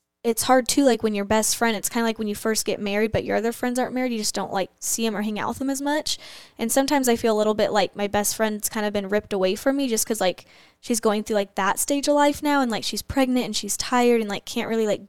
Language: English